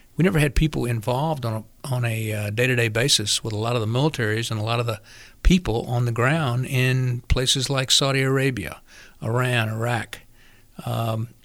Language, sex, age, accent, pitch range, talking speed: English, male, 50-69, American, 115-140 Hz, 180 wpm